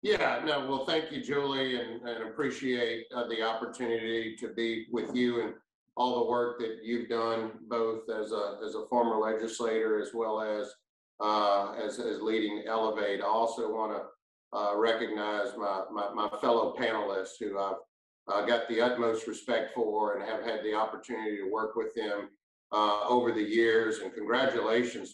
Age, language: 50-69, English